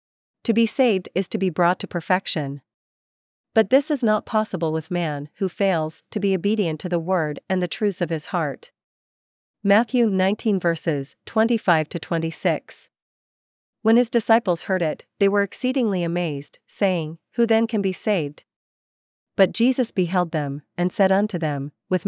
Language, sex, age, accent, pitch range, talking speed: English, female, 40-59, American, 160-210 Hz, 165 wpm